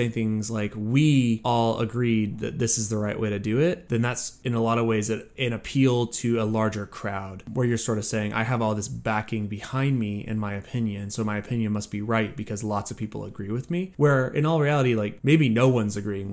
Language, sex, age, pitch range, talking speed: English, male, 20-39, 105-125 Hz, 235 wpm